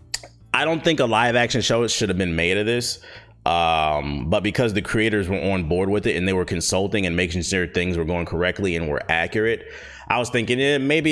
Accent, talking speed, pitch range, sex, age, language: American, 220 wpm, 85-105 Hz, male, 30-49, English